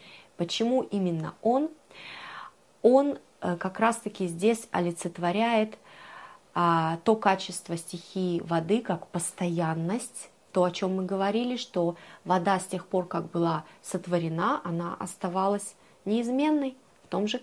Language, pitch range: Russian, 170-210 Hz